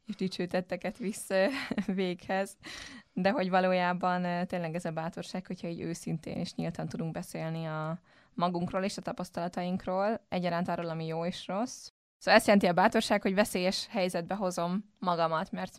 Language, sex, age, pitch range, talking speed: Hungarian, female, 20-39, 175-195 Hz, 150 wpm